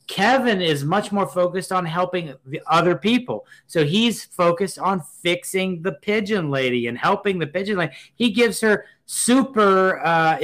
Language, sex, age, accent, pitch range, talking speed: English, male, 30-49, American, 135-195 Hz, 155 wpm